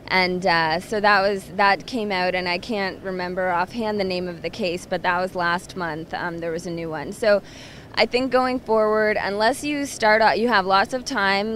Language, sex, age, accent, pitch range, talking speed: English, female, 20-39, American, 180-205 Hz, 225 wpm